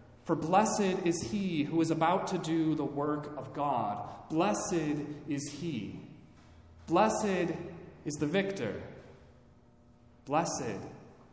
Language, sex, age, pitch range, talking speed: English, male, 30-49, 130-170 Hz, 110 wpm